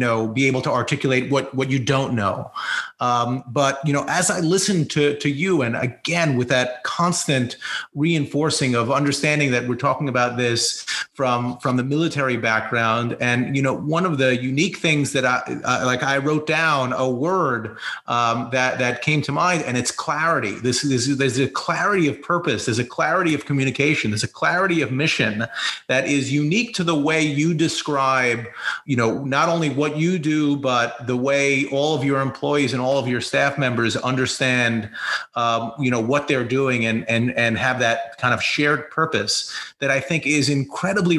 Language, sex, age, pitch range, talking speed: English, male, 30-49, 120-145 Hz, 195 wpm